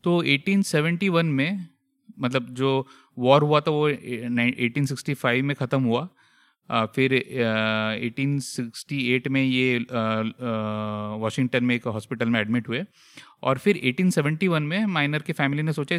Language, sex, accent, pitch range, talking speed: Hindi, male, native, 120-150 Hz, 130 wpm